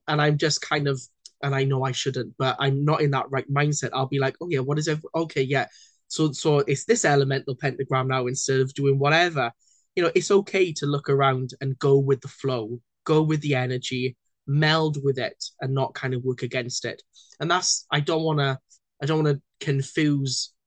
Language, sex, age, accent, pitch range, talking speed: English, male, 10-29, British, 130-145 Hz, 220 wpm